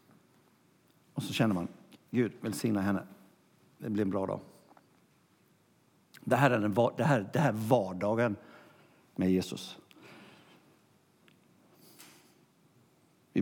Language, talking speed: Swedish, 105 wpm